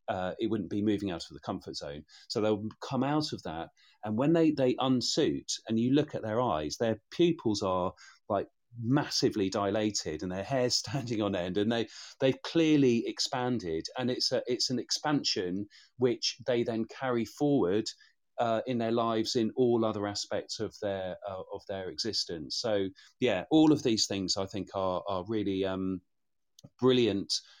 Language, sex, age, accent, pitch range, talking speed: English, male, 40-59, British, 90-120 Hz, 180 wpm